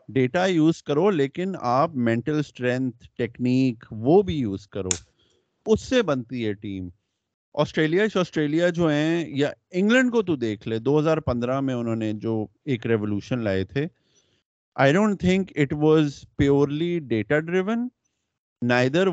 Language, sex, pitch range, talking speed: Urdu, male, 125-170 Hz, 80 wpm